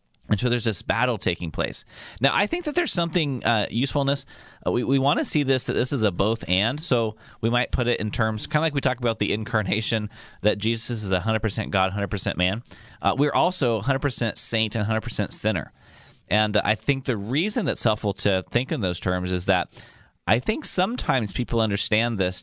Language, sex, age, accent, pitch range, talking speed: English, male, 30-49, American, 95-125 Hz, 210 wpm